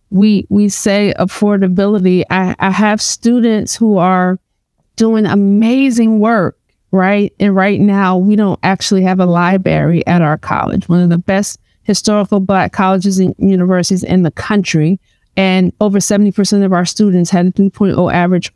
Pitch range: 180-210 Hz